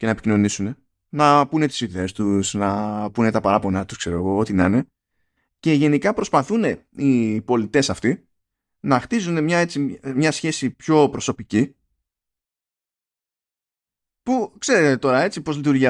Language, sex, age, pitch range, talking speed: Greek, male, 20-39, 105-160 Hz, 145 wpm